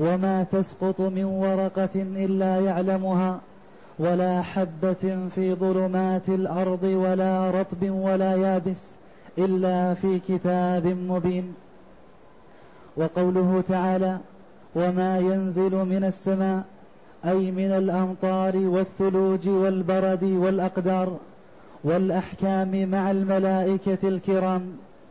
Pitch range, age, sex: 185-195 Hz, 30-49, male